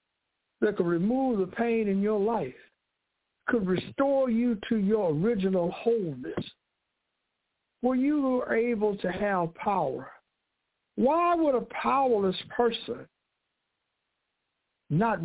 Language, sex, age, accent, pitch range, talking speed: English, male, 60-79, American, 195-255 Hz, 110 wpm